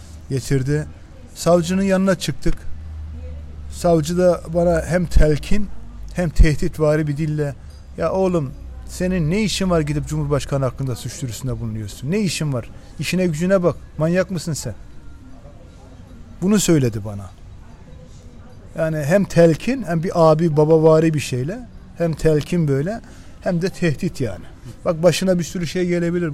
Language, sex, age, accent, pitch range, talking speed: Turkish, male, 40-59, native, 135-185 Hz, 135 wpm